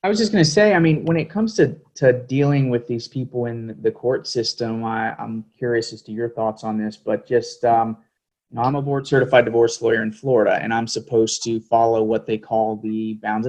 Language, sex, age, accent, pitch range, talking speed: English, male, 30-49, American, 110-120 Hz, 235 wpm